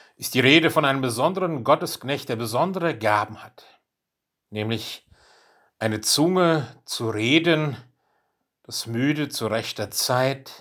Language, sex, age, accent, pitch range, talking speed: German, male, 60-79, German, 115-150 Hz, 120 wpm